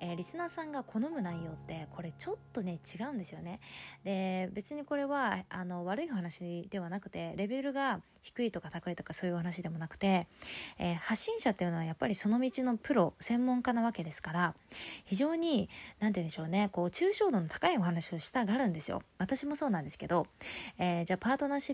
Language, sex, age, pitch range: Japanese, female, 20-39, 175-270 Hz